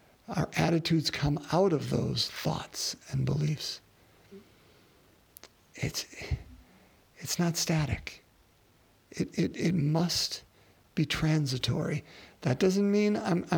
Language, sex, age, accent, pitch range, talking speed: English, male, 50-69, American, 140-175 Hz, 100 wpm